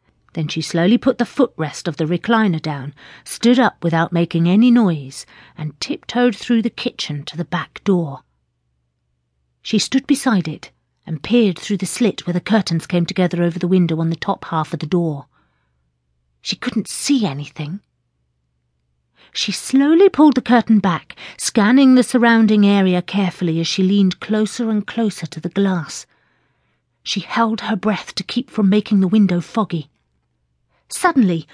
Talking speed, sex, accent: 160 wpm, female, British